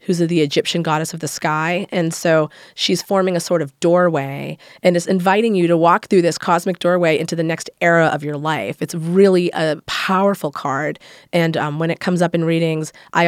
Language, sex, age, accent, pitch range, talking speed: English, female, 30-49, American, 160-190 Hz, 210 wpm